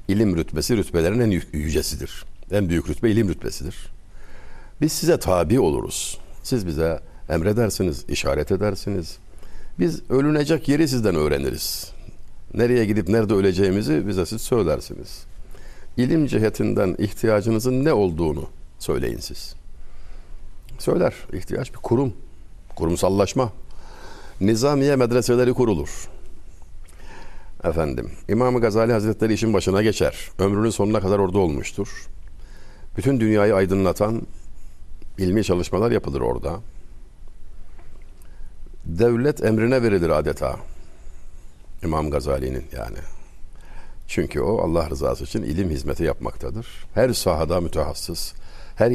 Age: 60-79